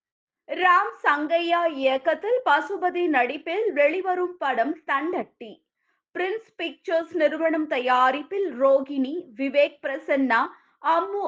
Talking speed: 85 wpm